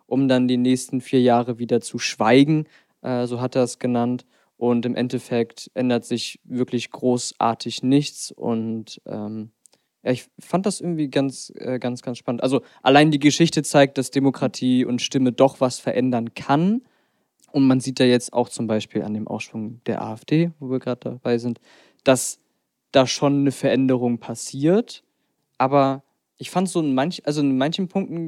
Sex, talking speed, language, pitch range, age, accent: male, 175 wpm, German, 120-145 Hz, 20-39, German